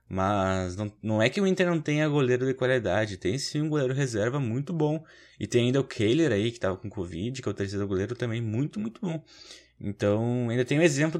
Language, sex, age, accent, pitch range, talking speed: Portuguese, male, 20-39, Brazilian, 100-130 Hz, 230 wpm